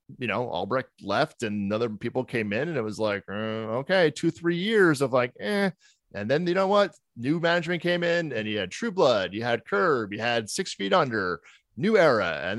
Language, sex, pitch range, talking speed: English, male, 110-155 Hz, 220 wpm